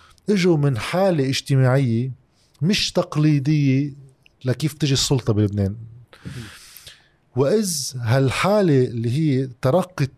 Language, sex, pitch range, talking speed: Arabic, male, 115-145 Hz, 90 wpm